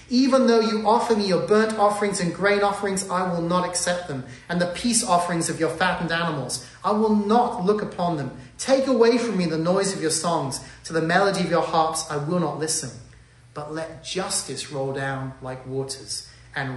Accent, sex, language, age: British, male, English, 30-49